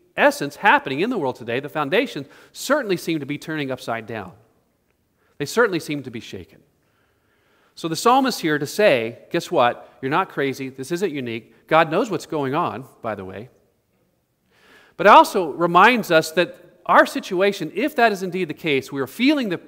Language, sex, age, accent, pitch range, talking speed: English, male, 40-59, American, 130-180 Hz, 185 wpm